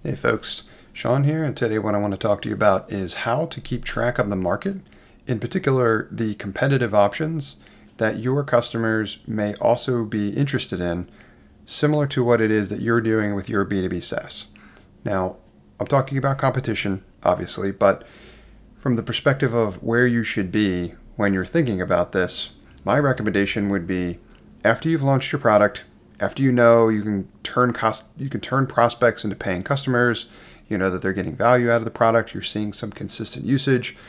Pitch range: 100-125 Hz